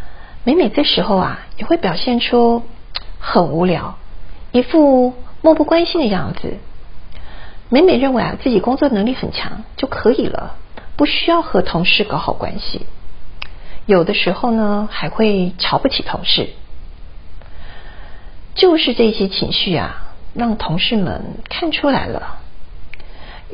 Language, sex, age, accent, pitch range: Chinese, female, 50-69, native, 175-250 Hz